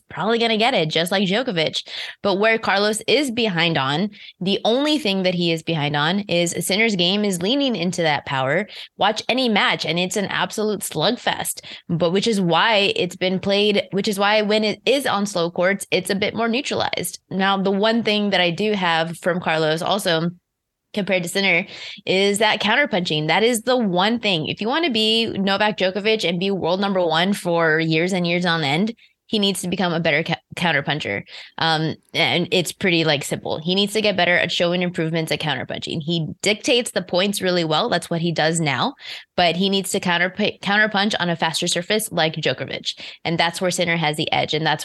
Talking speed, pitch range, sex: 210 wpm, 165-200 Hz, female